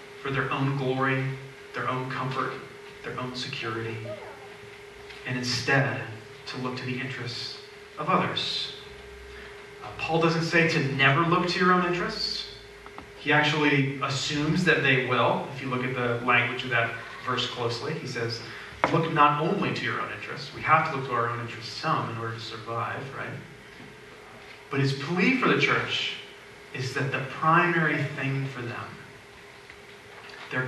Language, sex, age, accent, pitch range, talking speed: English, male, 30-49, American, 125-150 Hz, 160 wpm